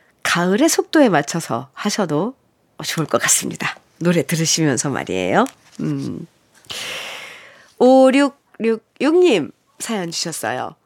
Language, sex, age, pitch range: Korean, female, 40-59, 180-270 Hz